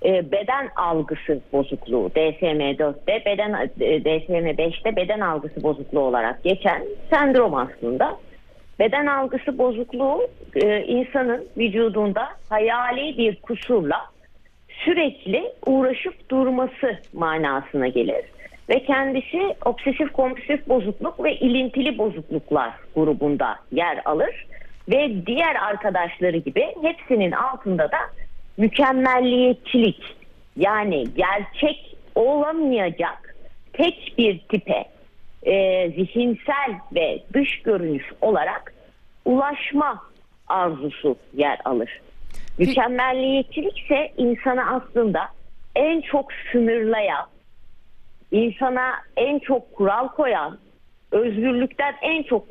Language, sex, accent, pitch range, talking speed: Turkish, female, native, 195-275 Hz, 85 wpm